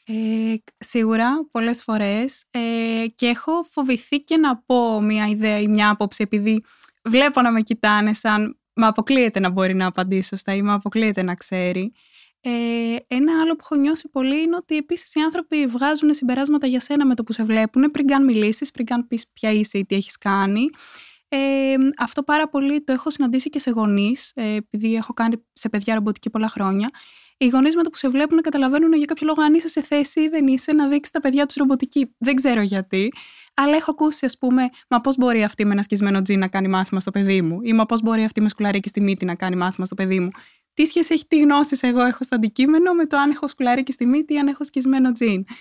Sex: female